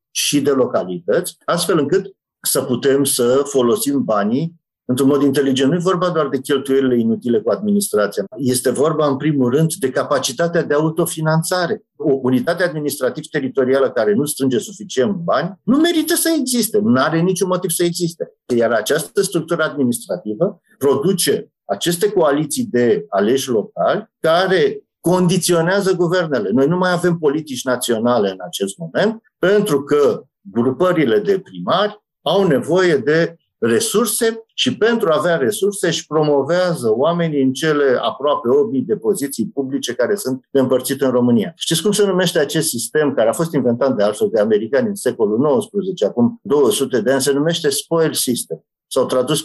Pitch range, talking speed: 135-200 Hz, 155 wpm